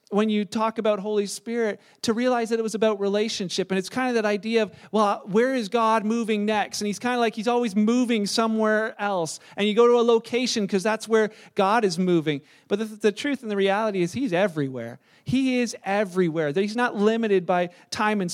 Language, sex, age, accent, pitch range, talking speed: English, male, 40-59, American, 200-235 Hz, 220 wpm